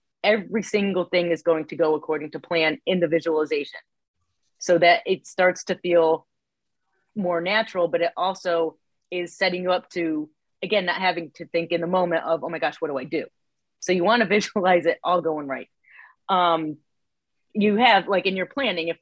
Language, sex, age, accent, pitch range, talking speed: English, female, 30-49, American, 160-190 Hz, 195 wpm